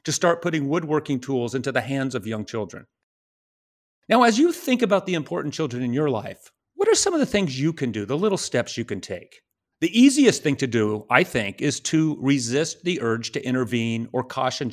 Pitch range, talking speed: 120-170 Hz, 215 wpm